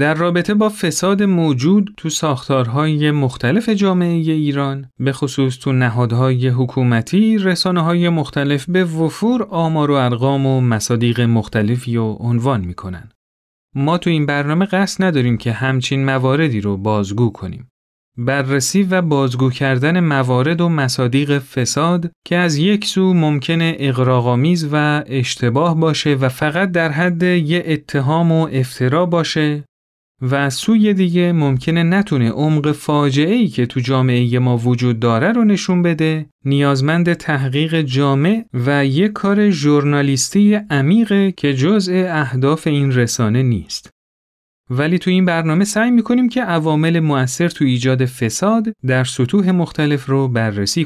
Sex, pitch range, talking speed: male, 130-175 Hz, 135 wpm